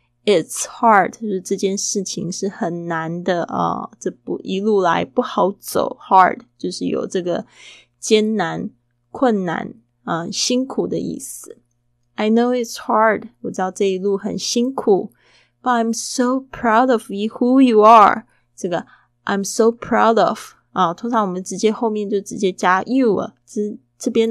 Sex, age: female, 20-39